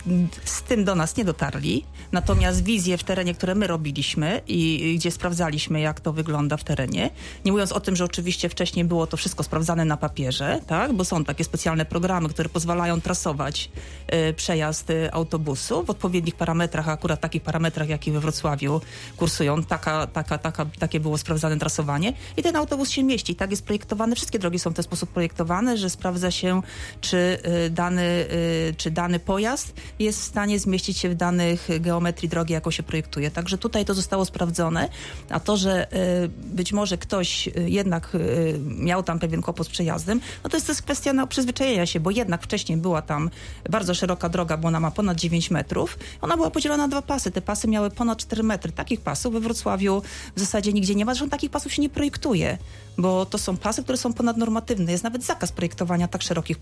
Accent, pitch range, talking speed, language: native, 165-205 Hz, 190 wpm, Polish